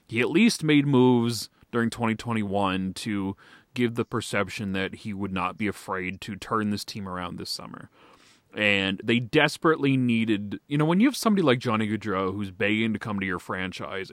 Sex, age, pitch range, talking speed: male, 30-49, 105-155 Hz, 185 wpm